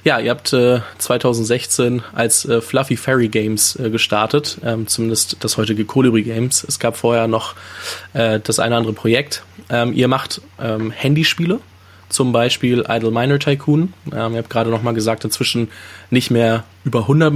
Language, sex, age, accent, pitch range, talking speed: German, male, 20-39, German, 110-125 Hz, 165 wpm